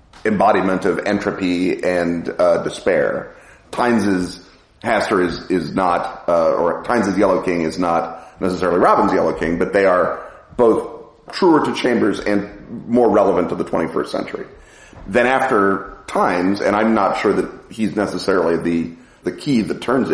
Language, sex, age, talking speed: English, male, 40-59, 150 wpm